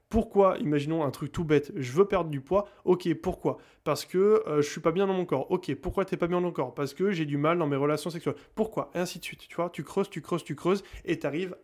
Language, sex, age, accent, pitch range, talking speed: French, male, 20-39, French, 150-195 Hz, 300 wpm